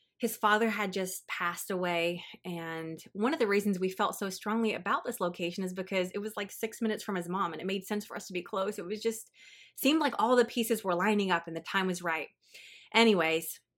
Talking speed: 235 wpm